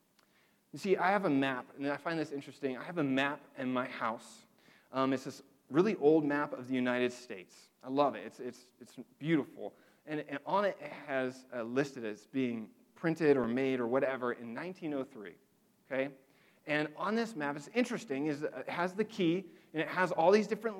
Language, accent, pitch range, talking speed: English, American, 135-185 Hz, 200 wpm